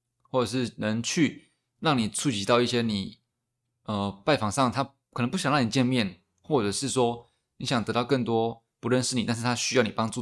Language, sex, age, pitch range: Chinese, male, 20-39, 110-130 Hz